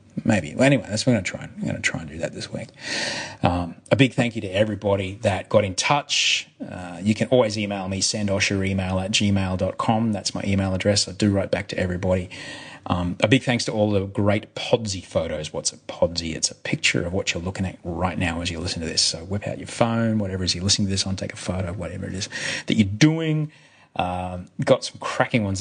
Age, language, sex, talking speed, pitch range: 30-49, English, male, 235 wpm, 95-110 Hz